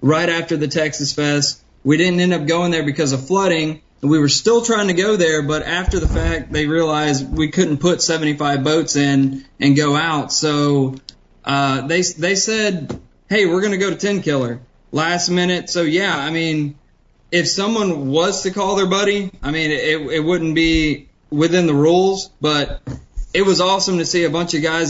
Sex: male